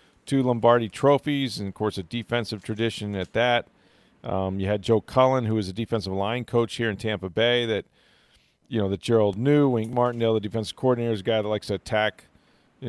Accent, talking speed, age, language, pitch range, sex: American, 210 wpm, 40-59, English, 105-130 Hz, male